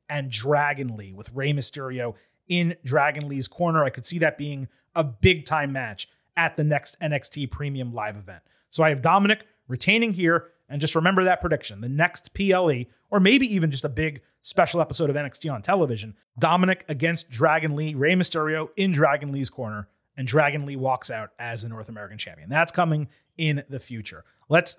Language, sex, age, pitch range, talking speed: English, male, 30-49, 130-170 Hz, 190 wpm